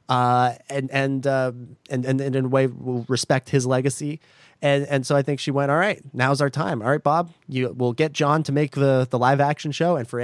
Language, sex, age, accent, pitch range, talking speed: English, male, 30-49, American, 125-165 Hz, 240 wpm